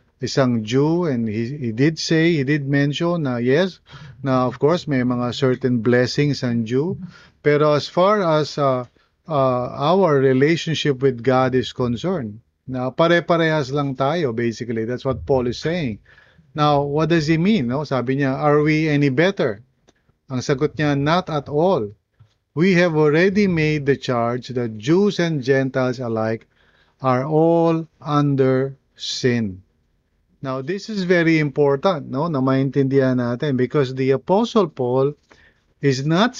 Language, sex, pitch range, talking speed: English, male, 130-160 Hz, 150 wpm